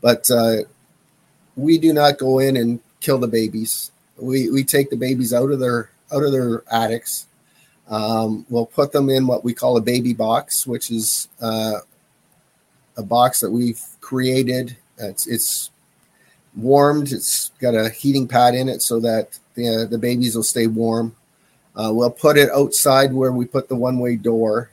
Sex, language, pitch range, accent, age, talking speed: male, English, 115-130 Hz, American, 40-59, 170 wpm